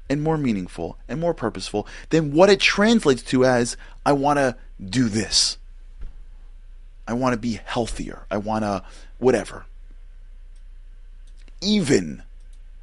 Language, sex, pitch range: English, male, 70-105 Hz